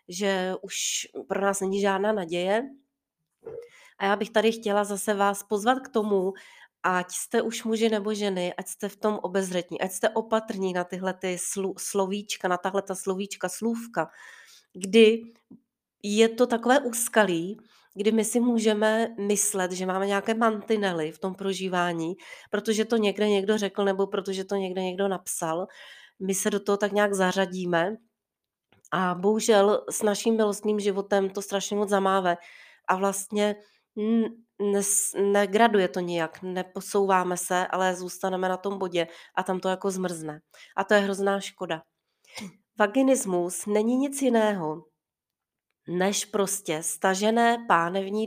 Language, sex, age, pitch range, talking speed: Czech, female, 30-49, 180-220 Hz, 145 wpm